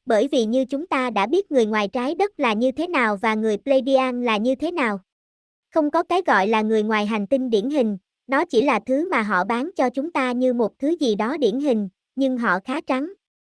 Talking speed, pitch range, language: 240 wpm, 230-290 Hz, Vietnamese